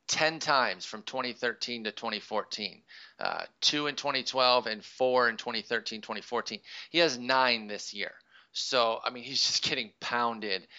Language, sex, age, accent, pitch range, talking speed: English, male, 30-49, American, 110-135 Hz, 150 wpm